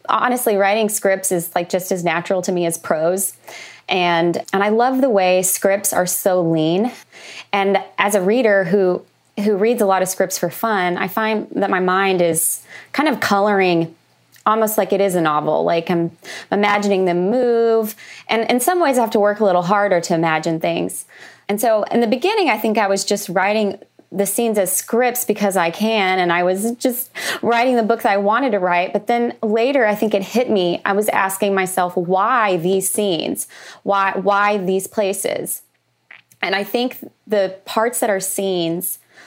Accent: American